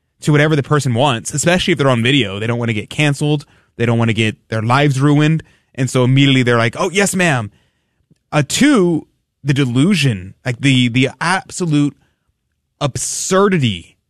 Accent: American